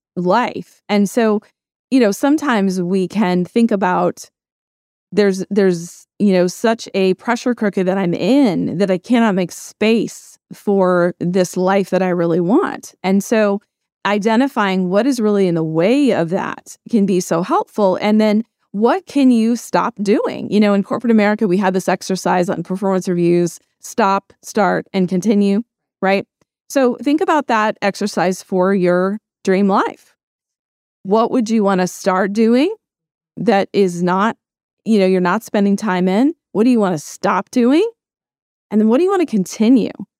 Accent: American